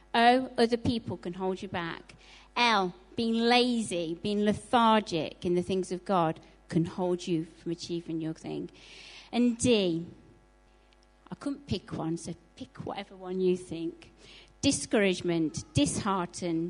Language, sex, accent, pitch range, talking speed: English, female, British, 170-210 Hz, 135 wpm